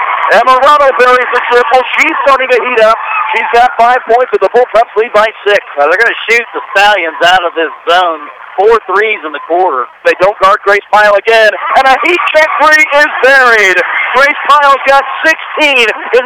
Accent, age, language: American, 50-69, English